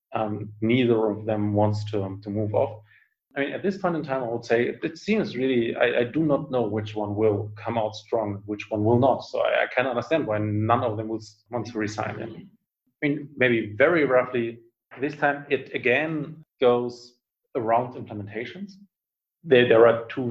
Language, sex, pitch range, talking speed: English, male, 115-140 Hz, 200 wpm